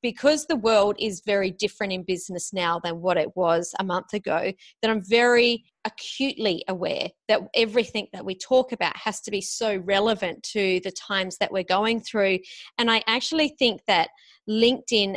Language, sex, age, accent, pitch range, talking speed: English, female, 30-49, Australian, 190-225 Hz, 180 wpm